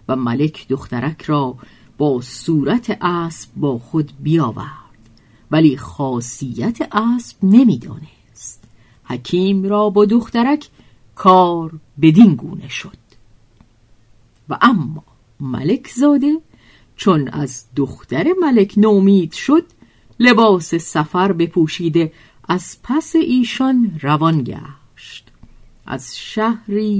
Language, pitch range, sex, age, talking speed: Persian, 135-230 Hz, female, 50-69, 90 wpm